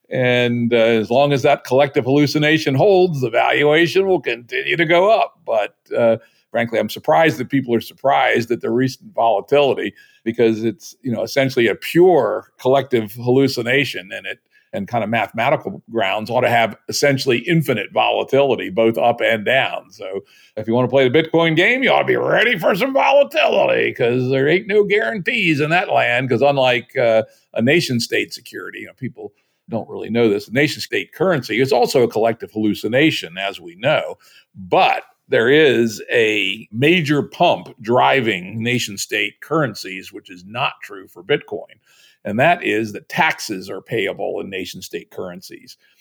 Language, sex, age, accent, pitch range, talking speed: English, male, 50-69, American, 115-155 Hz, 170 wpm